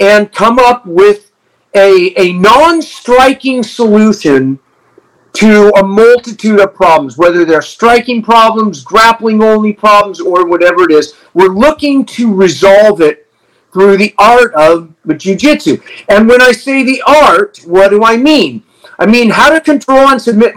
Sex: male